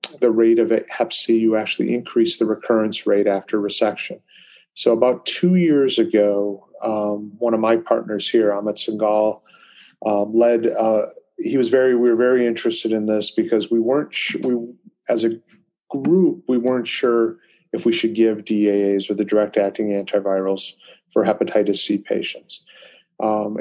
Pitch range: 105-115 Hz